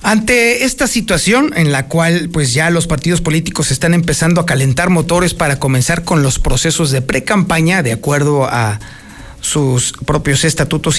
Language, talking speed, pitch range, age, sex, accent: Spanish, 165 wpm, 145-200 Hz, 50-69, male, Mexican